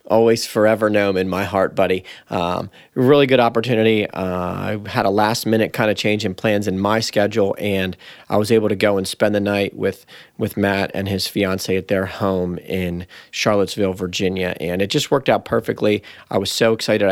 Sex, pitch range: male, 95-110 Hz